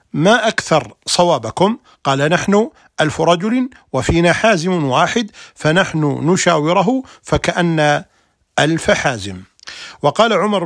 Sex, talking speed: male, 95 wpm